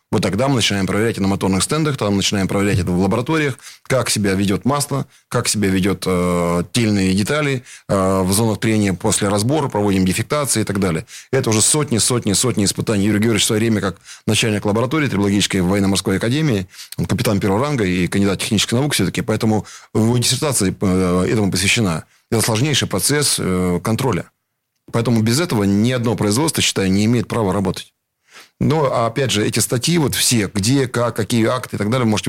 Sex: male